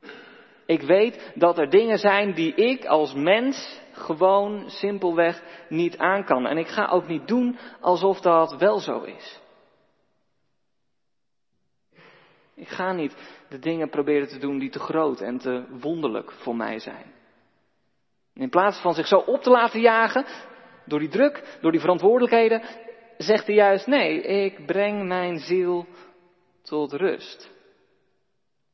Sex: male